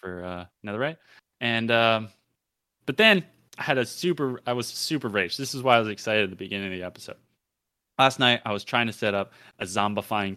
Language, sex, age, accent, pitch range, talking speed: English, male, 20-39, American, 95-115 Hz, 220 wpm